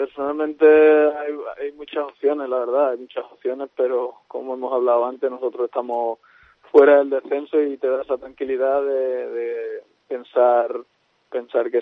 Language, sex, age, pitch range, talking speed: Spanish, male, 20-39, 120-155 Hz, 150 wpm